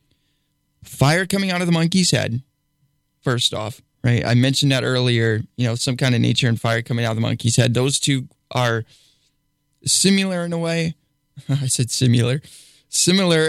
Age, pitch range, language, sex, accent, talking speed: 20-39, 120-150 Hz, English, male, American, 175 wpm